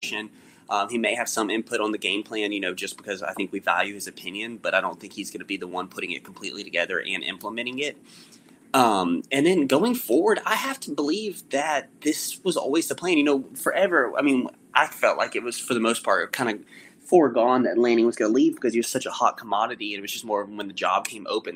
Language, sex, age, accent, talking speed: English, male, 20-39, American, 260 wpm